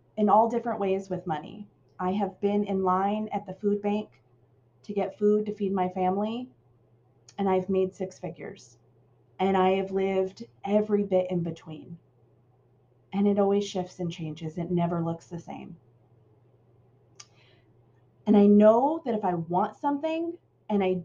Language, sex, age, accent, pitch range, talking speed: English, female, 30-49, American, 175-260 Hz, 160 wpm